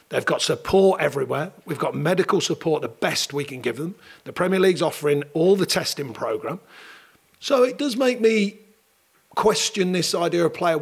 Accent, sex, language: British, male, English